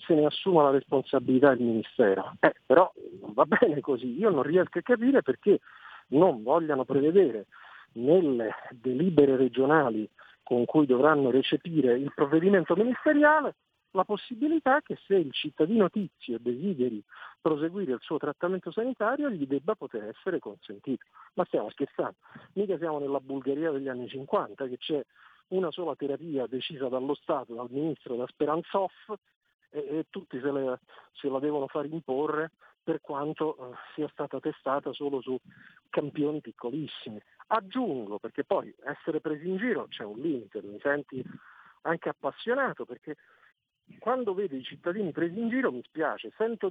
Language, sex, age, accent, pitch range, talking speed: Italian, male, 50-69, native, 135-195 Hz, 150 wpm